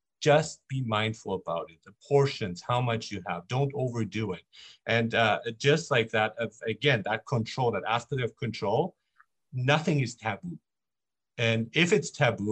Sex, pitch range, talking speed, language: male, 110-150 Hz, 165 wpm, English